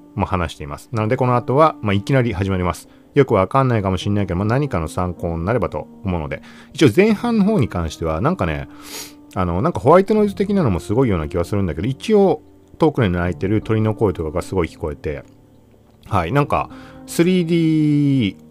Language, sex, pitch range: Japanese, male, 90-145 Hz